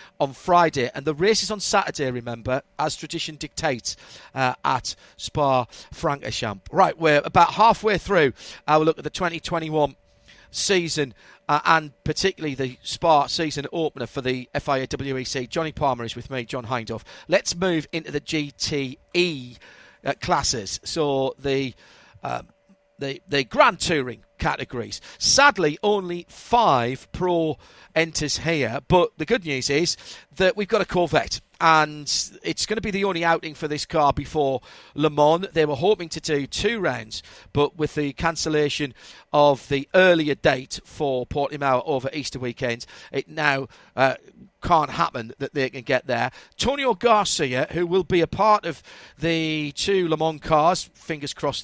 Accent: British